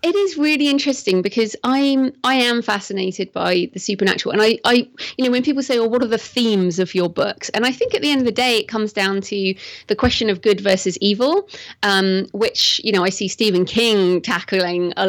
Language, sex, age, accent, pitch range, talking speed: English, female, 30-49, British, 190-235 Hz, 235 wpm